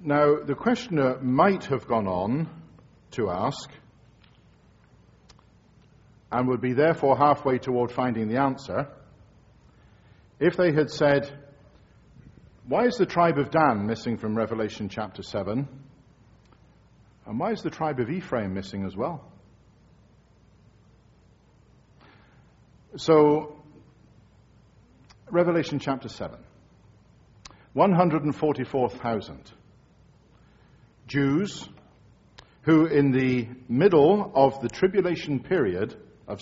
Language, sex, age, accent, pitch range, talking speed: English, male, 50-69, British, 120-150 Hz, 95 wpm